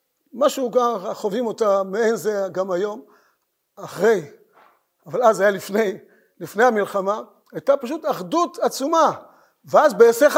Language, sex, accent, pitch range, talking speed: Hebrew, male, native, 195-265 Hz, 120 wpm